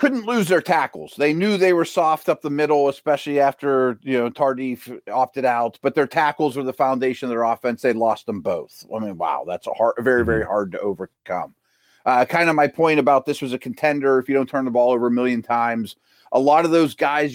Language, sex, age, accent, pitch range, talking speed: English, male, 30-49, American, 120-145 Hz, 235 wpm